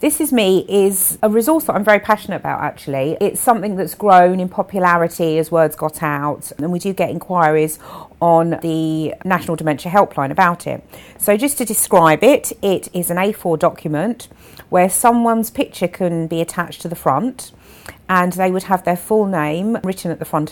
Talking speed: 185 wpm